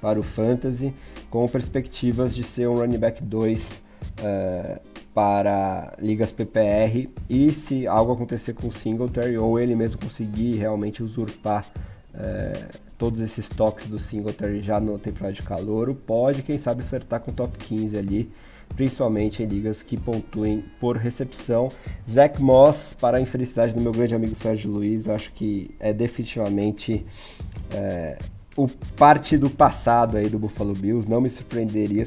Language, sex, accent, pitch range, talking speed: Portuguese, male, Brazilian, 105-125 Hz, 155 wpm